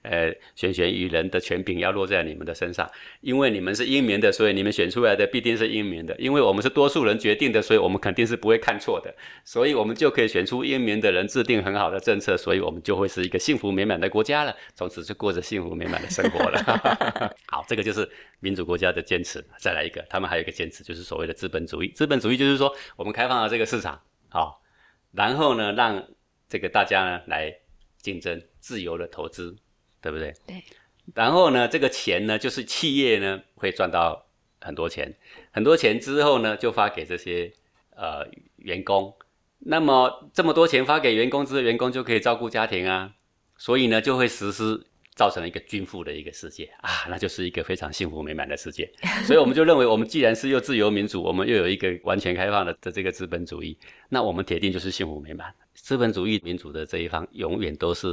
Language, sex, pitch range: Chinese, male, 95-130 Hz